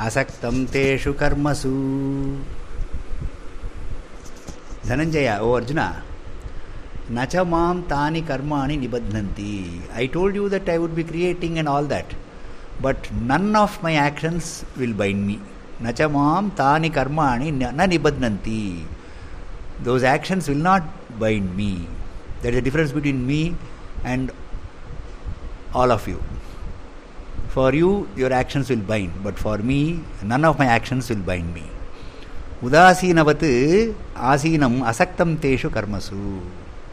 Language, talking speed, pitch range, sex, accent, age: English, 115 wpm, 95-155 Hz, male, Indian, 60-79